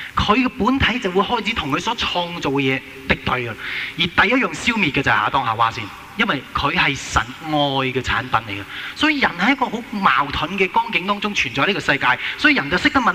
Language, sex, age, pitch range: Chinese, male, 20-39, 130-205 Hz